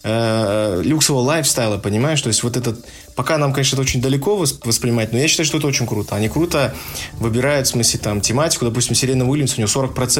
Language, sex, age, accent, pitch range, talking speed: Russian, male, 20-39, native, 105-130 Hz, 205 wpm